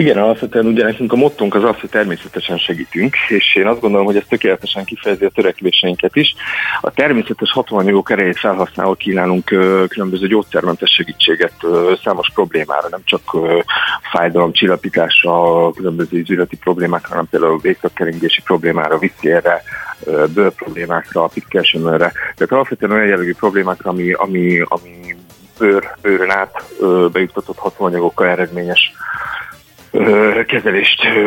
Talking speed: 115 wpm